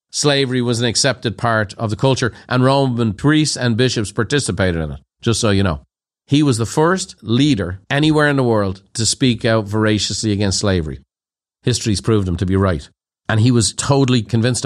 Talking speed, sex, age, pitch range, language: 190 wpm, male, 40-59, 110-135 Hz, English